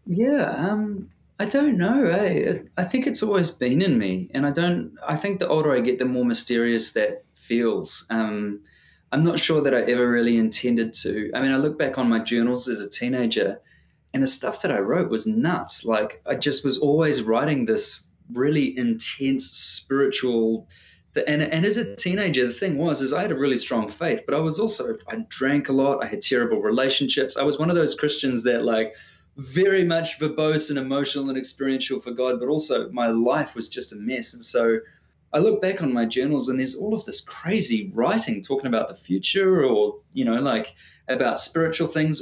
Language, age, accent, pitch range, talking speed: English, 20-39, Australian, 120-185 Hz, 205 wpm